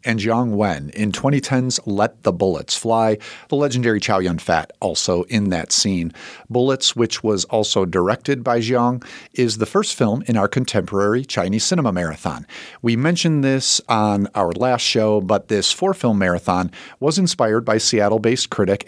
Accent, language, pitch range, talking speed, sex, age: American, English, 105-130 Hz, 160 wpm, male, 50-69